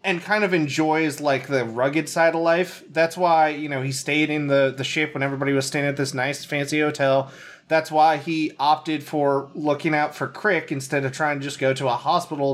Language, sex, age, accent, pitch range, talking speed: English, male, 30-49, American, 130-165 Hz, 225 wpm